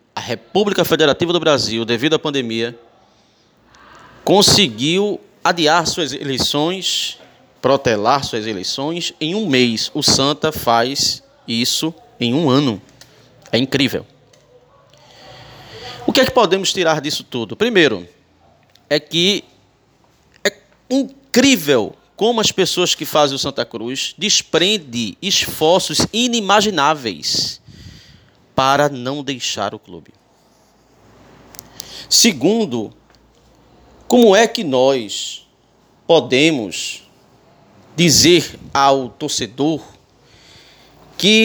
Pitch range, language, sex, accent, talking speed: 130-190 Hz, Portuguese, male, Brazilian, 95 wpm